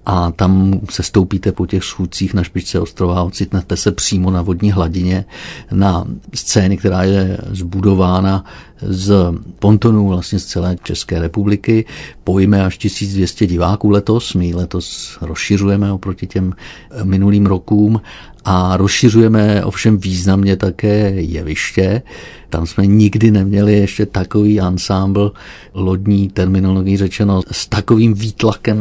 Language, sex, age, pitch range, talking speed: Czech, male, 50-69, 95-105 Hz, 125 wpm